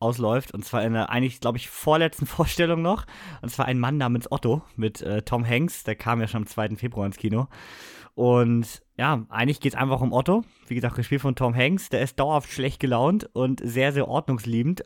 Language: German